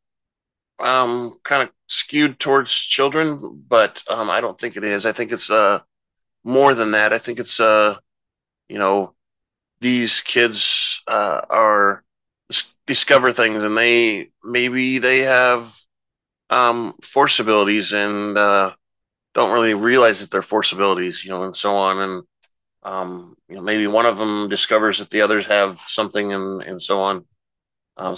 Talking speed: 155 wpm